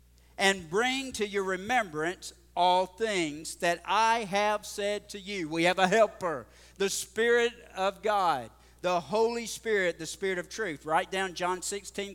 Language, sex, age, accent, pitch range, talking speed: English, male, 50-69, American, 175-215 Hz, 160 wpm